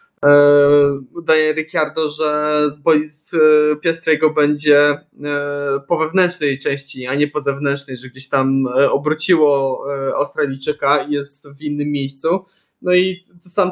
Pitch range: 140-165 Hz